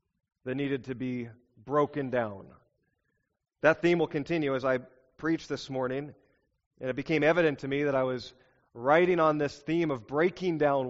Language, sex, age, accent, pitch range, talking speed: English, male, 40-59, American, 135-185 Hz, 170 wpm